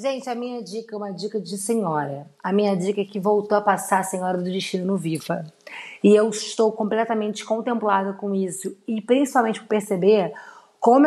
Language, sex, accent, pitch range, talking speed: Portuguese, female, Brazilian, 195-240 Hz, 190 wpm